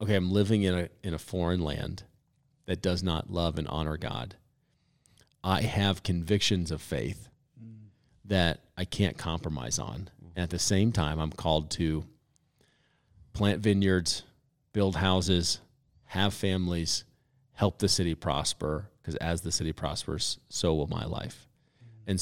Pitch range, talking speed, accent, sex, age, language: 85-105 Hz, 145 wpm, American, male, 40-59, English